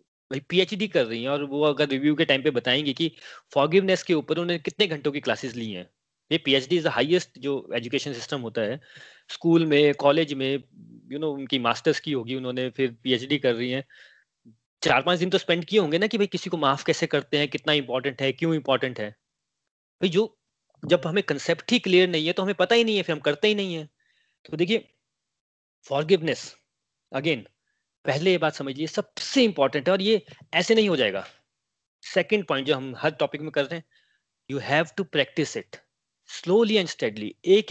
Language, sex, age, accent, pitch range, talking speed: Hindi, male, 30-49, native, 130-175 Hz, 210 wpm